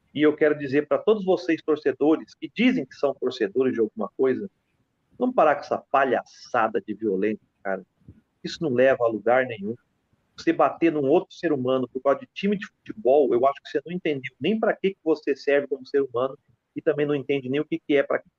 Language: Portuguese